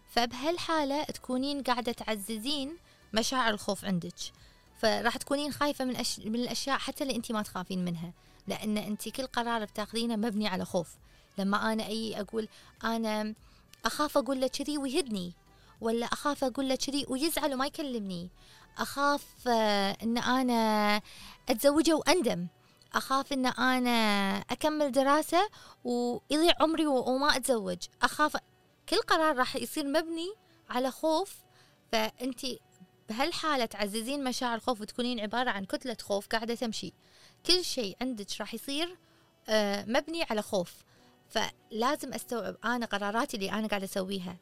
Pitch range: 205-270 Hz